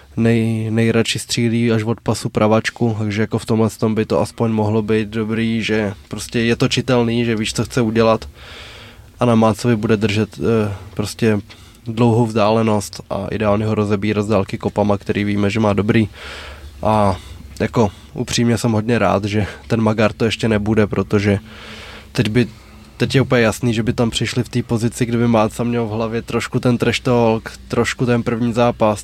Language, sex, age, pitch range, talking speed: Czech, male, 20-39, 105-115 Hz, 175 wpm